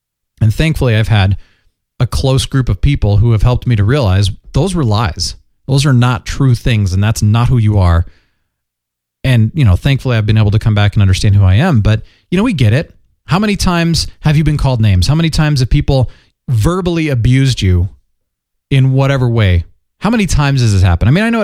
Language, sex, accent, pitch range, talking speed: English, male, American, 100-140 Hz, 220 wpm